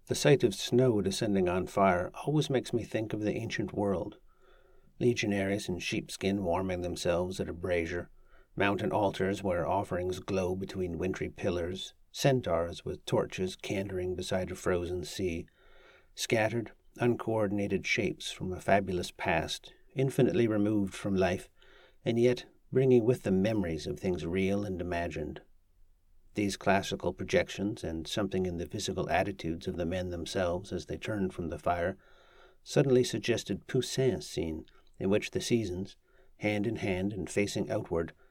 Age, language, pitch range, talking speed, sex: 50-69, English, 90-110 Hz, 145 wpm, male